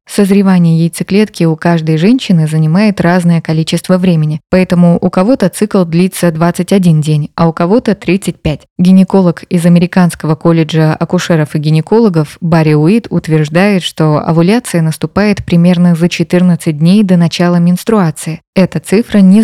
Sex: female